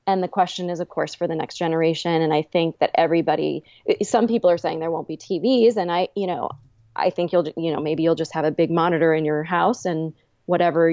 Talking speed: 240 wpm